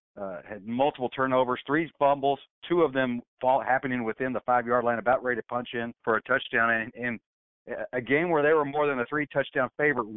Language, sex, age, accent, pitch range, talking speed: English, male, 40-59, American, 120-140 Hz, 205 wpm